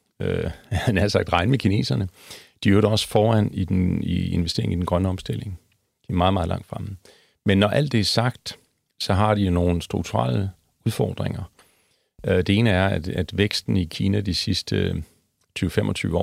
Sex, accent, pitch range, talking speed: male, native, 90-105 Hz, 190 wpm